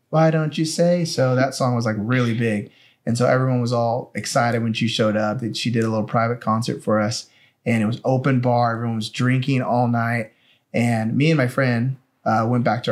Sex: male